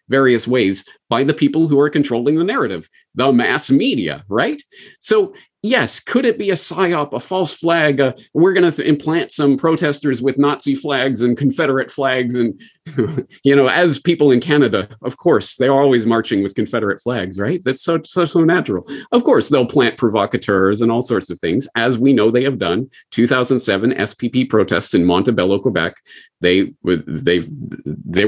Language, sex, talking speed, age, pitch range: English, male, 175 wpm, 40-59, 120-170 Hz